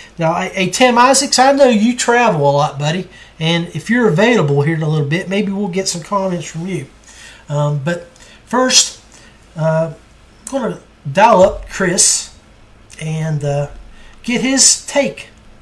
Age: 40-59